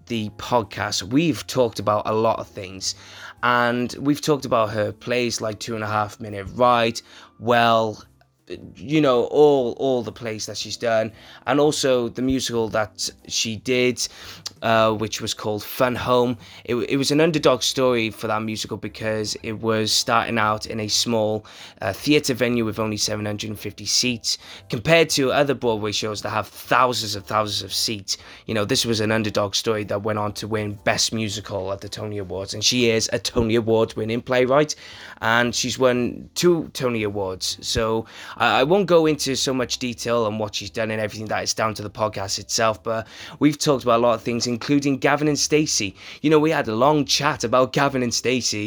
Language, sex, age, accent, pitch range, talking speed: English, male, 20-39, British, 105-125 Hz, 195 wpm